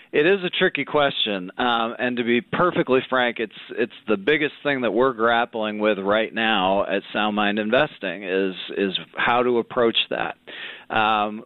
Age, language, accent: 40-59, English, American